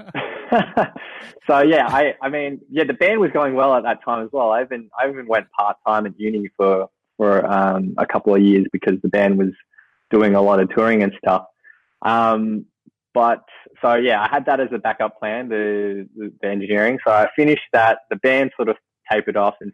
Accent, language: Australian, English